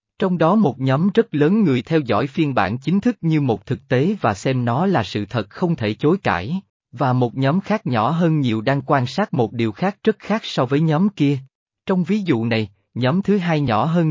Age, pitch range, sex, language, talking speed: 20-39, 115-170 Hz, male, Vietnamese, 235 wpm